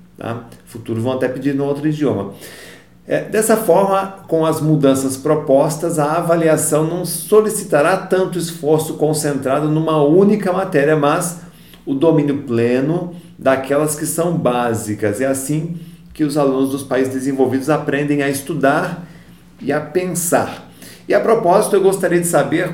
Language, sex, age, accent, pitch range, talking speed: Portuguese, male, 40-59, Brazilian, 130-165 Hz, 140 wpm